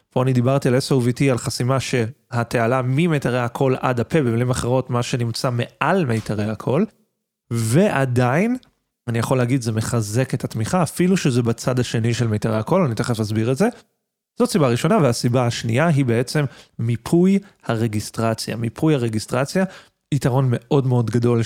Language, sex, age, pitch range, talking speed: Hebrew, male, 30-49, 115-160 Hz, 155 wpm